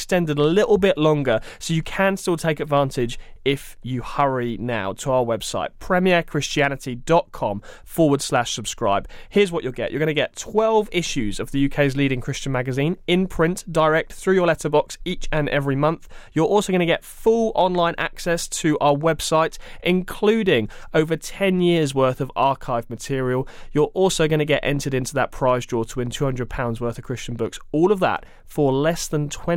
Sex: male